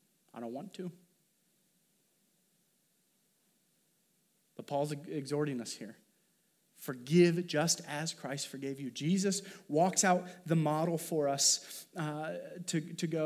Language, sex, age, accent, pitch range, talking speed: English, male, 30-49, American, 150-190 Hz, 120 wpm